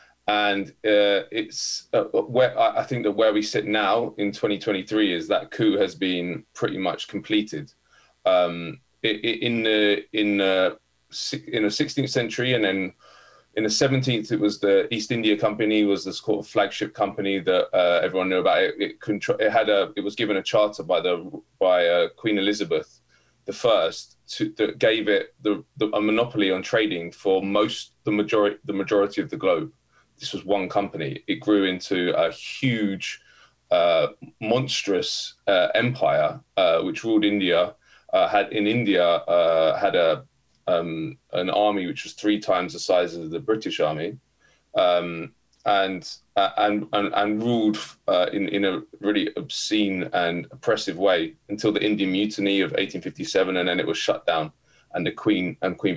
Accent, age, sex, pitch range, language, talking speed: British, 20-39, male, 95-115 Hz, English, 175 wpm